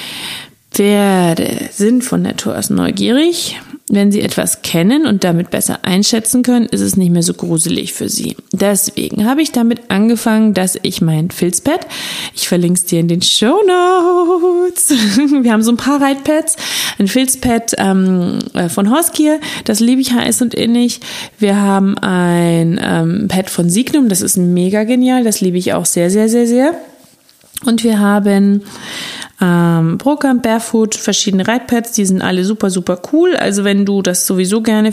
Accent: German